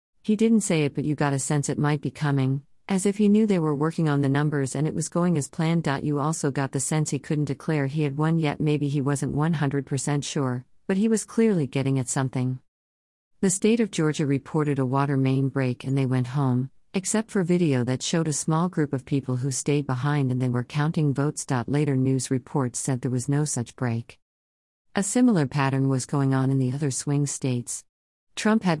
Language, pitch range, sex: English, 130-155 Hz, female